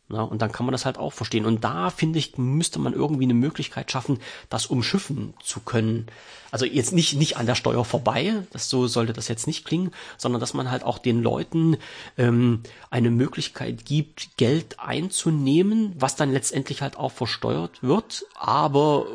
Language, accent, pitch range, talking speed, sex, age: German, German, 115-140 Hz, 185 wpm, male, 40-59